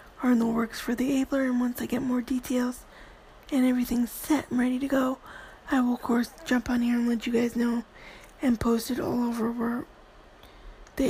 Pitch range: 240-260 Hz